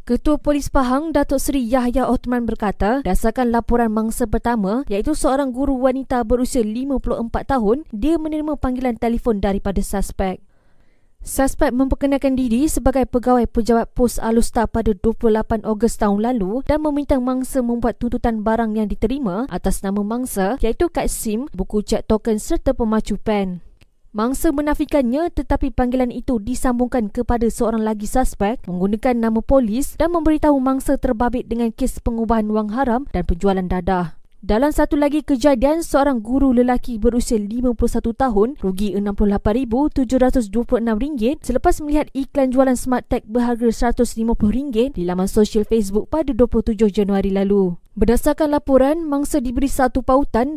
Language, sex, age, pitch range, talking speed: Malay, female, 20-39, 220-270 Hz, 140 wpm